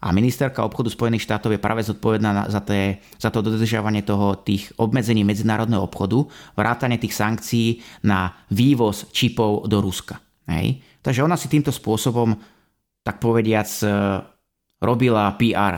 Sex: male